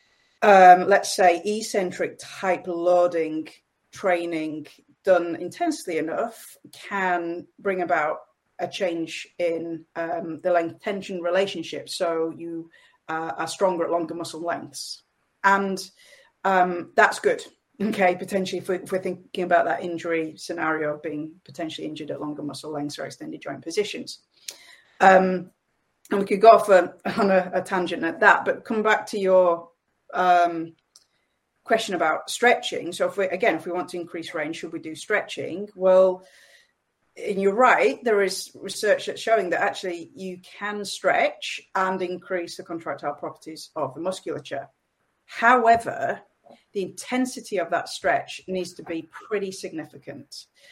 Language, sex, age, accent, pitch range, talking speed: English, female, 30-49, British, 165-195 Hz, 150 wpm